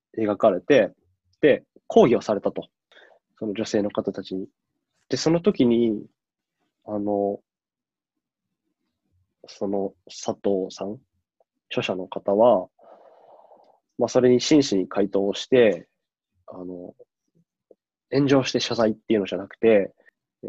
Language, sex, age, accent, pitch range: Japanese, male, 20-39, native, 100-130 Hz